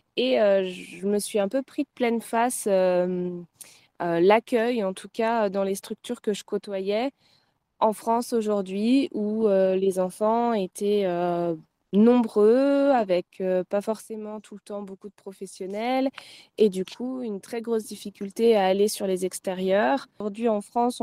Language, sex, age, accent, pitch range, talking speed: French, female, 20-39, French, 195-230 Hz, 165 wpm